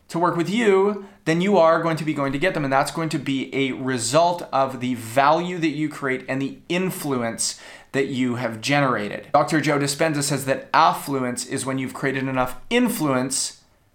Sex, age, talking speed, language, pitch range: male, 30-49, 200 wpm, English, 130-165 Hz